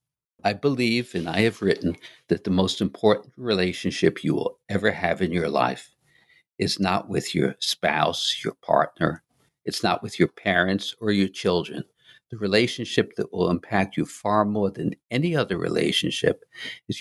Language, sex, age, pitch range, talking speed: English, male, 60-79, 95-120 Hz, 160 wpm